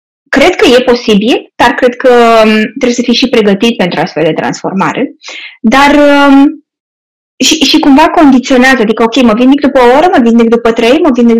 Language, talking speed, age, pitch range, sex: Romanian, 185 wpm, 20-39, 235-300 Hz, female